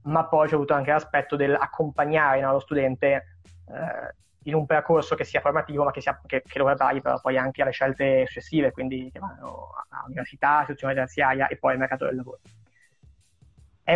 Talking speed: 190 wpm